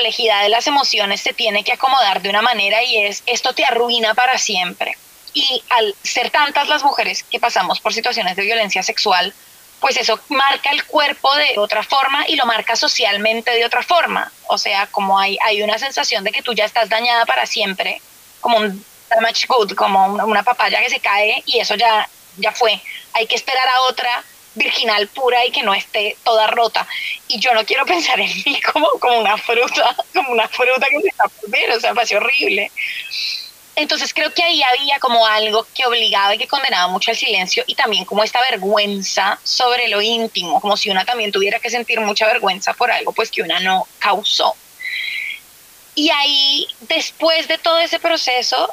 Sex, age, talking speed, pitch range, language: female, 20-39, 195 wpm, 215-270 Hz, Spanish